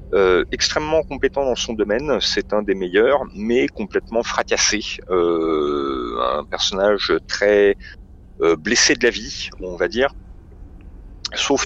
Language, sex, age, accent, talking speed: French, male, 40-59, French, 135 wpm